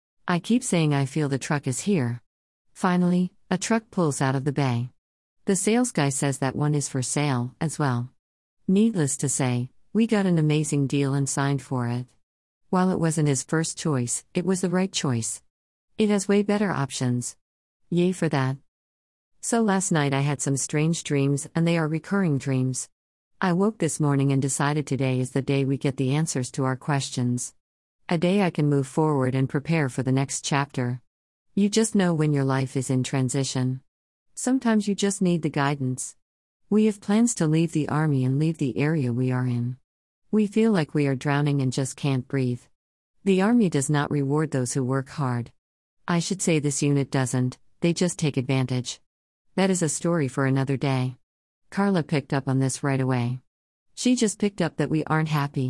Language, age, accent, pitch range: English, 50-69, American, 130-170 Hz